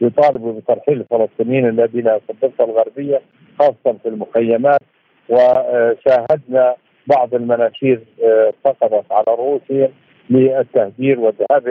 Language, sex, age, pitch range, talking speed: Arabic, male, 50-69, 120-155 Hz, 90 wpm